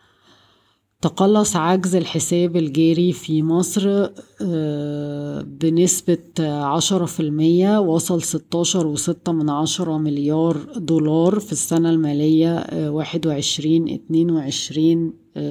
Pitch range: 150-170 Hz